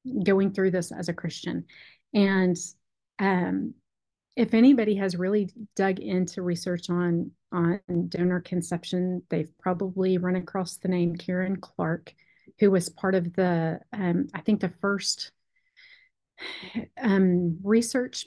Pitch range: 180-210 Hz